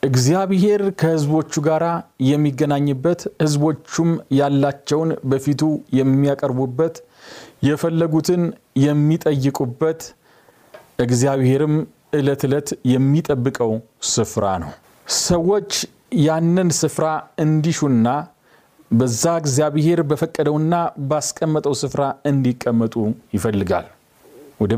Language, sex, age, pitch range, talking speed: Amharic, male, 40-59, 120-160 Hz, 70 wpm